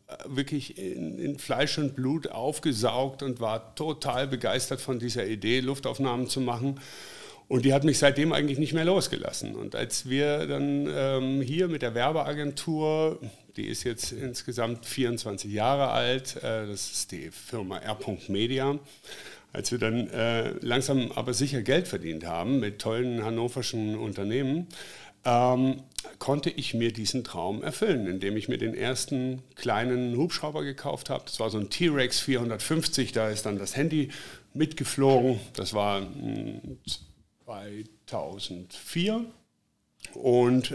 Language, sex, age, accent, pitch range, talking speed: German, male, 50-69, German, 110-140 Hz, 135 wpm